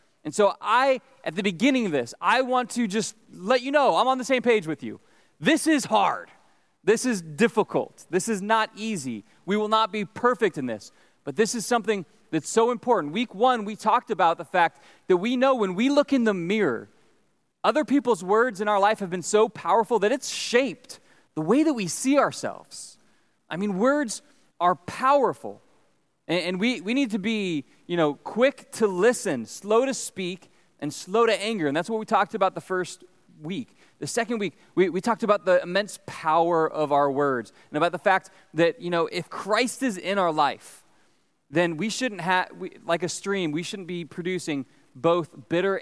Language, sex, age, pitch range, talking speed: English, male, 20-39, 165-235 Hz, 200 wpm